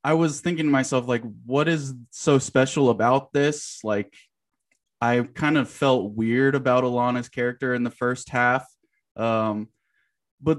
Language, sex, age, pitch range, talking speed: English, male, 20-39, 115-135 Hz, 155 wpm